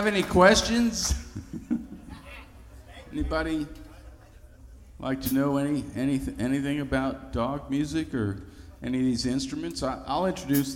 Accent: American